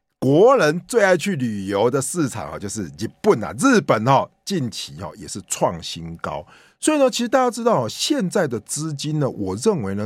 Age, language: 50-69, Chinese